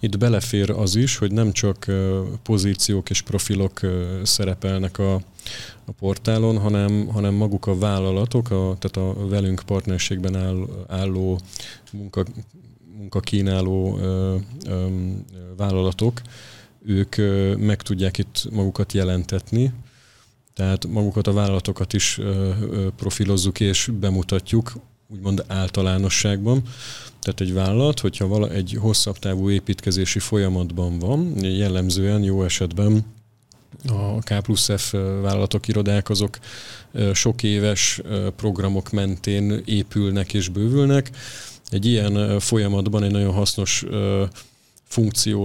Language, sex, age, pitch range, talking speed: Hungarian, male, 30-49, 95-110 Hz, 100 wpm